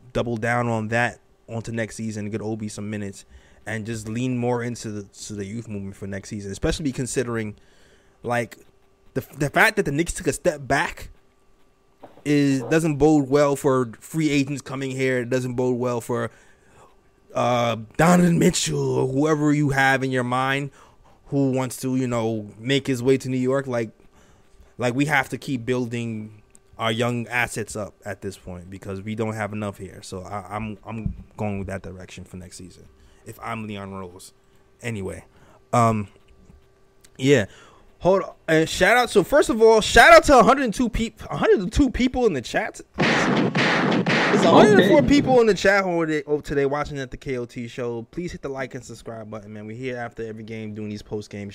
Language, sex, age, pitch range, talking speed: English, male, 20-39, 105-145 Hz, 185 wpm